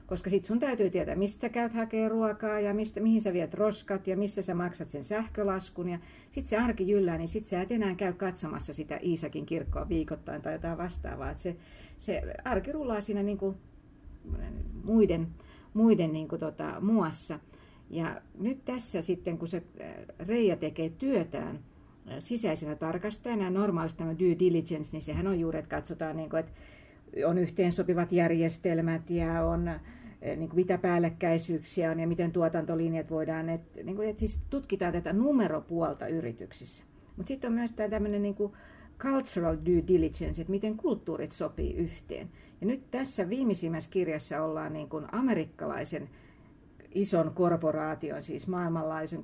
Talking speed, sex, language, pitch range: 150 wpm, female, Finnish, 160-210 Hz